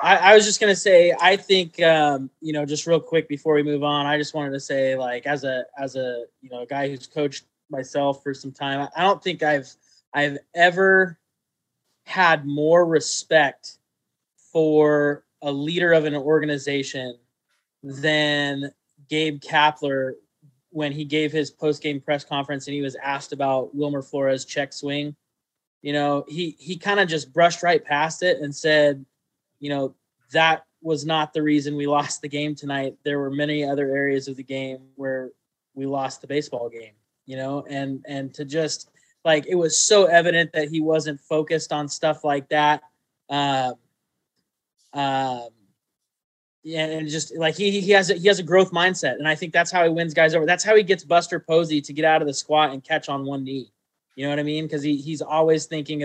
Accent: American